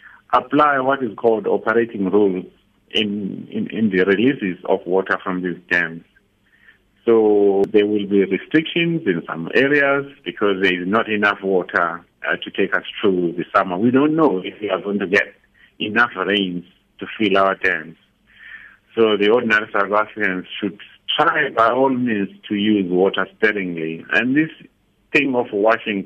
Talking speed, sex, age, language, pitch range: 165 wpm, male, 60-79, English, 95-115 Hz